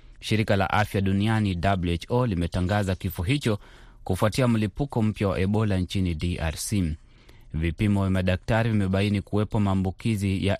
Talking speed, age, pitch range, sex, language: 125 wpm, 30-49, 90-110 Hz, male, Swahili